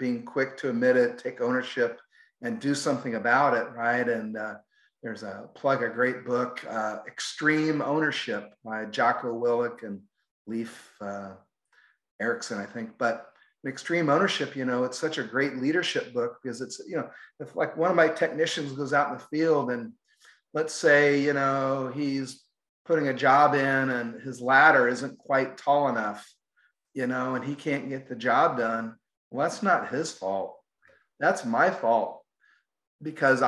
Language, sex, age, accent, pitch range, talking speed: English, male, 40-59, American, 120-150 Hz, 170 wpm